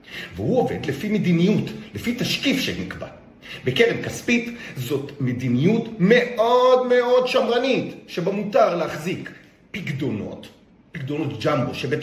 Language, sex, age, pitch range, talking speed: Hebrew, male, 40-59, 150-240 Hz, 105 wpm